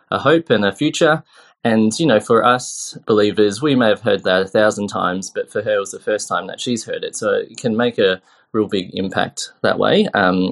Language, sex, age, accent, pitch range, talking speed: English, male, 20-39, Australian, 100-120 Hz, 240 wpm